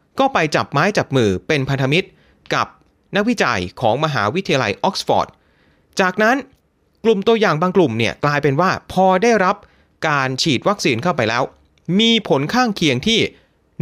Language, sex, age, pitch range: Thai, male, 30-49, 135-210 Hz